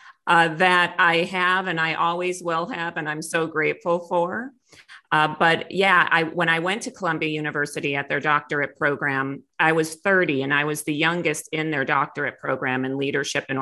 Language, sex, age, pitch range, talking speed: English, female, 40-59, 145-175 Hz, 185 wpm